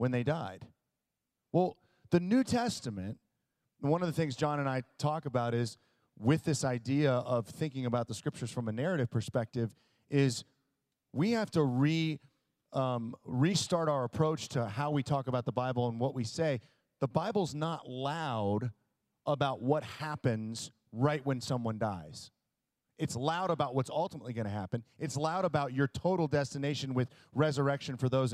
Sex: male